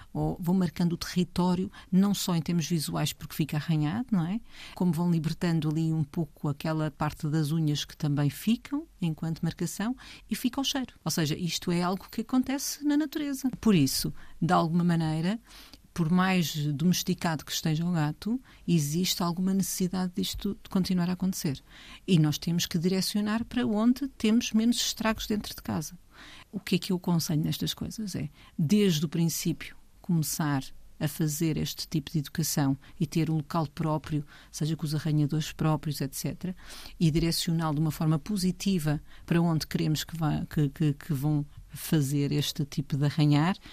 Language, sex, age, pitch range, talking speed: Portuguese, female, 50-69, 160-215 Hz, 170 wpm